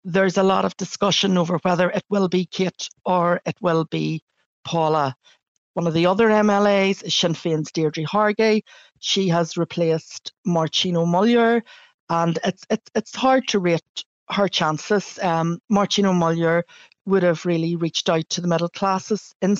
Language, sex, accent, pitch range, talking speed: English, female, Irish, 165-185 Hz, 160 wpm